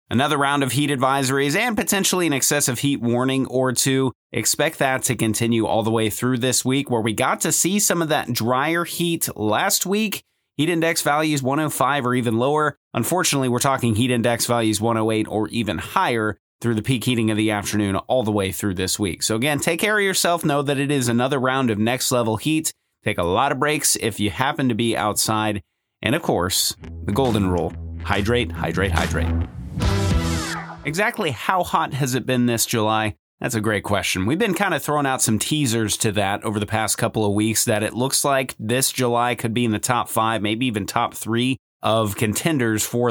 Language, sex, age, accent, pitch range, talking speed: English, male, 30-49, American, 105-135 Hz, 205 wpm